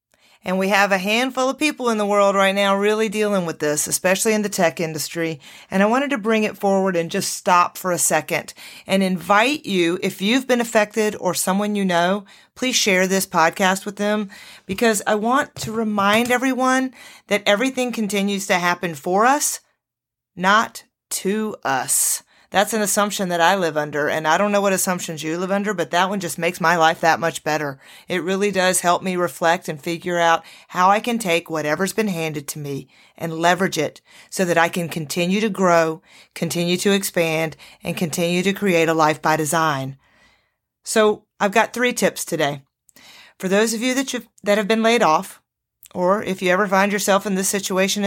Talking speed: 195 wpm